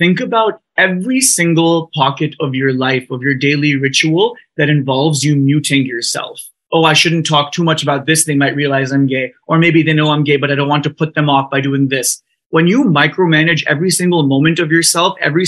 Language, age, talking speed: Hindi, 20-39, 215 wpm